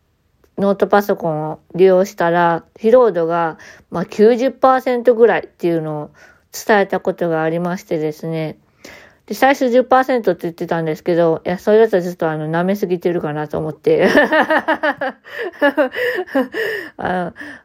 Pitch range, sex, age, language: 165-220 Hz, female, 20-39, Japanese